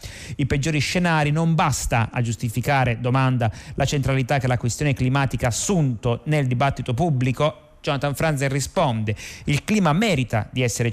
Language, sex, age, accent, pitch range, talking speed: Italian, male, 30-49, native, 120-150 Hz, 150 wpm